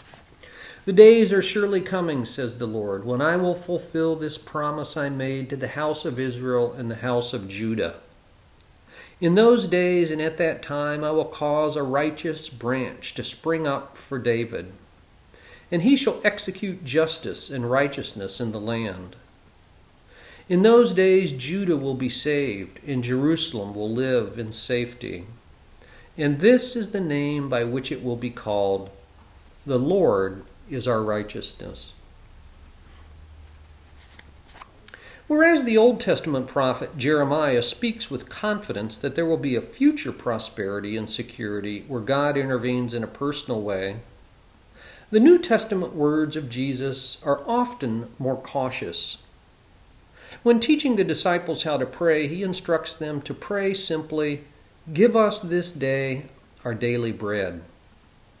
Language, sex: English, male